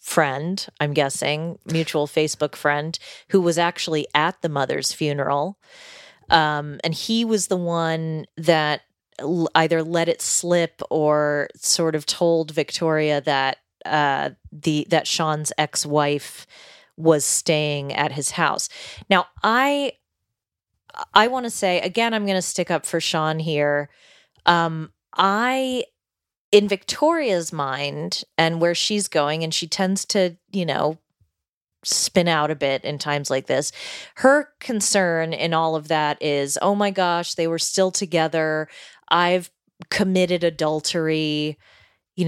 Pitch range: 150-185 Hz